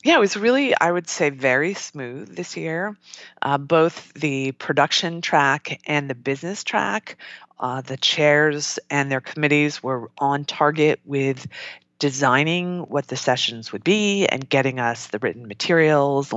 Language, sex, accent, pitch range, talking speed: English, female, American, 125-150 Hz, 155 wpm